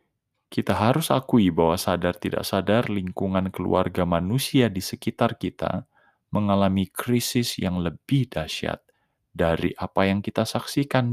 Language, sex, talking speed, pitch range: Indonesian, male, 125 wpm, 90-115 Hz